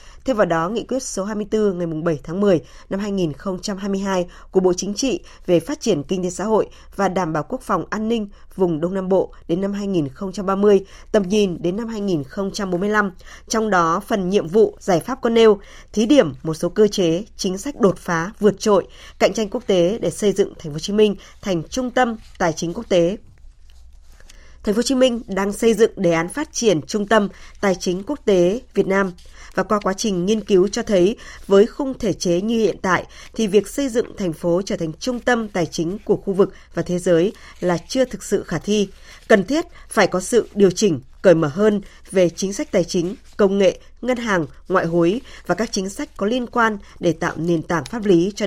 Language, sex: Vietnamese, female